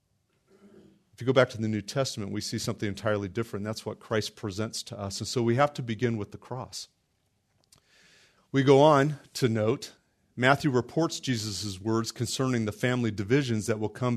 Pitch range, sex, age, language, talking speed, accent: 105-130 Hz, male, 40-59, English, 185 wpm, American